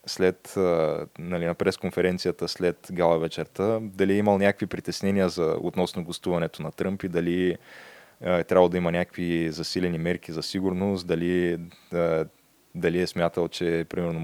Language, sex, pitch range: Bulgarian, male, 85-100 Hz